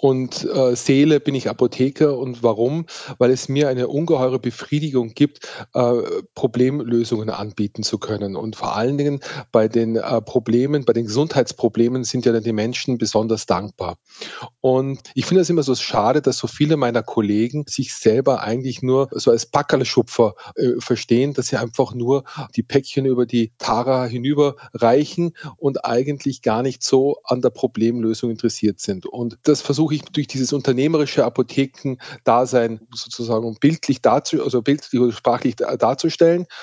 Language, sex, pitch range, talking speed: German, male, 115-140 Hz, 150 wpm